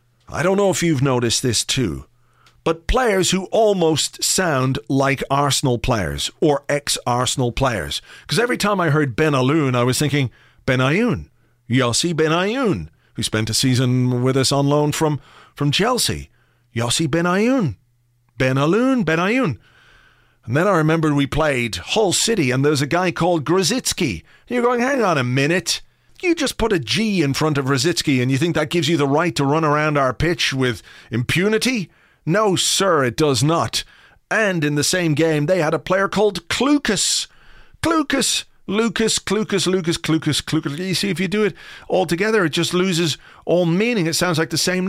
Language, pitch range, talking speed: English, 135-190 Hz, 185 wpm